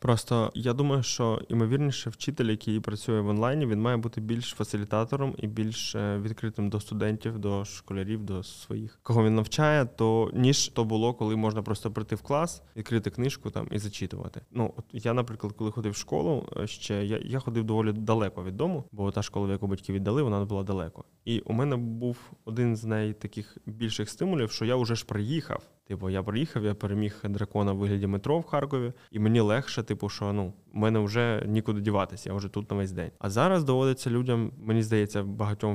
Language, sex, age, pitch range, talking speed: Ukrainian, male, 20-39, 105-120 Hz, 200 wpm